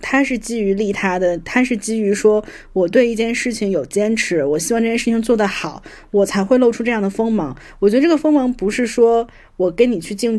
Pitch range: 195-235 Hz